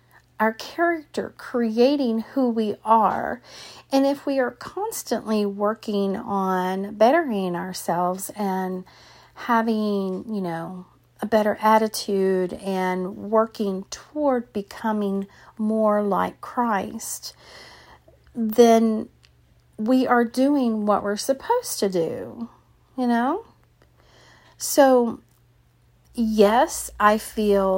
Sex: female